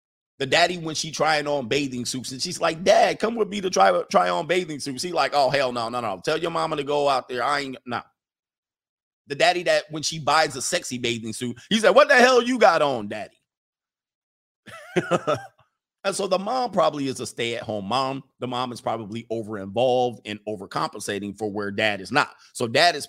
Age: 30-49